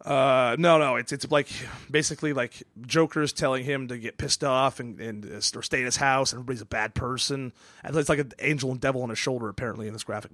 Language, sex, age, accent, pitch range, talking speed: English, male, 30-49, American, 115-140 Hz, 240 wpm